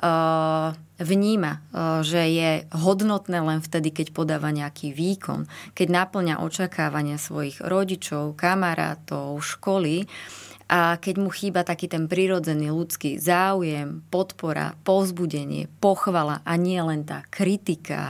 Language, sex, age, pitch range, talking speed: Slovak, female, 20-39, 155-180 Hz, 115 wpm